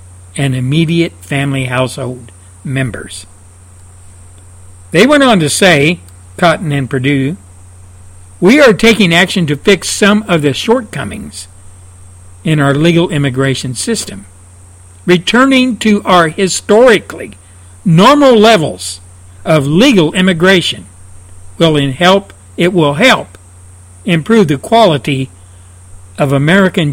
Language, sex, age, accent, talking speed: English, male, 60-79, American, 105 wpm